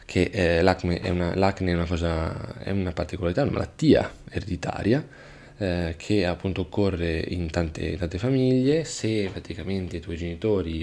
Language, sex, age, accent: Italian, male, 20-39, native